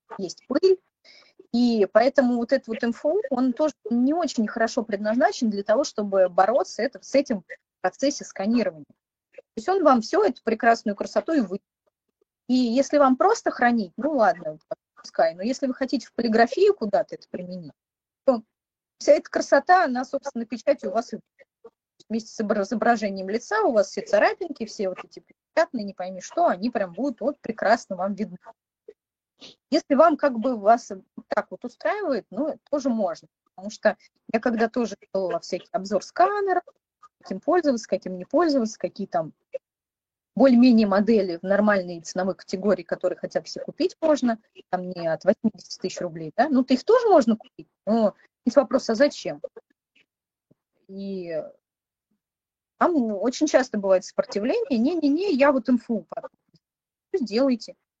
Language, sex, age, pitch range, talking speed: English, female, 30-49, 200-290 Hz, 155 wpm